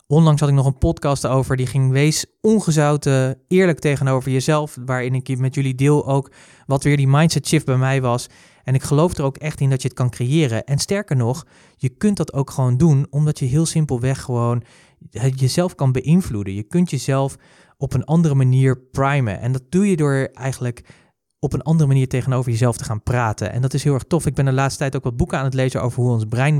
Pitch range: 125-150 Hz